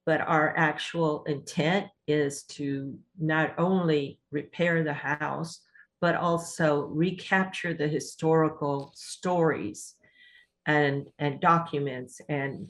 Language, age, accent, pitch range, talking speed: English, 50-69, American, 140-165 Hz, 100 wpm